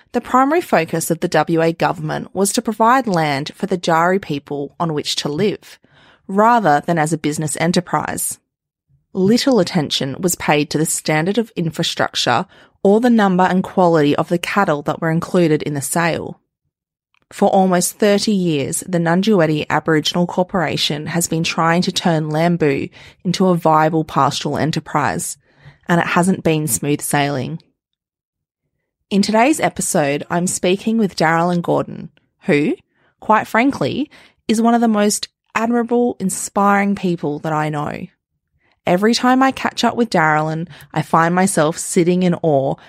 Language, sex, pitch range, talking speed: English, female, 155-200 Hz, 150 wpm